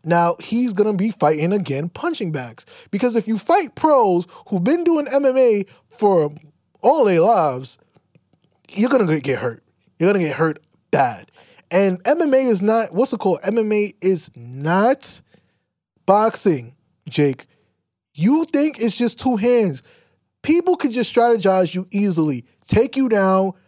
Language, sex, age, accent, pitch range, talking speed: English, male, 20-39, American, 150-215 Hz, 150 wpm